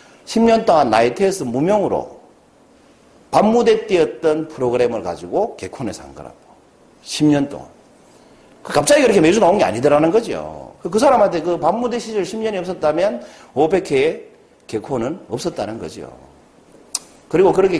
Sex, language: male, Korean